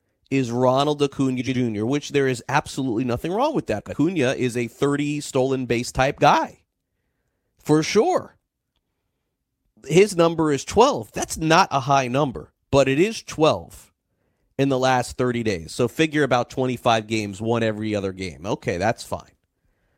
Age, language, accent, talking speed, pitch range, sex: 30-49, English, American, 150 wpm, 115-155 Hz, male